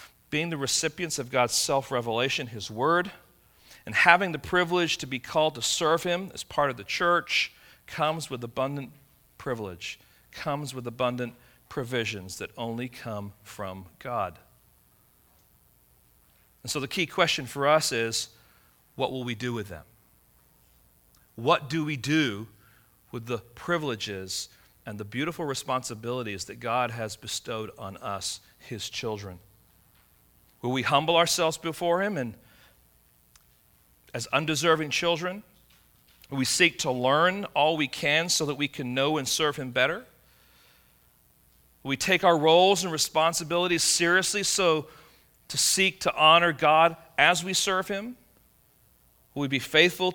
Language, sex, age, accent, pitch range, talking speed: English, male, 40-59, American, 115-160 Hz, 140 wpm